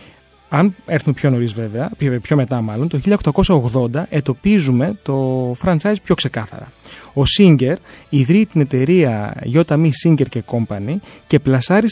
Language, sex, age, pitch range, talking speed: Greek, male, 30-49, 130-190 Hz, 135 wpm